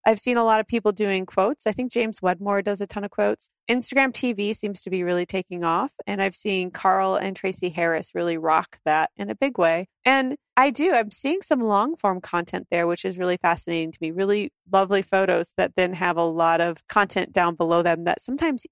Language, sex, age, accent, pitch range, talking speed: English, female, 30-49, American, 185-255 Hz, 225 wpm